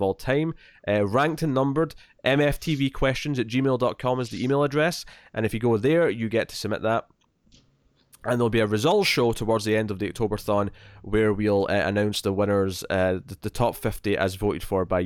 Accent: British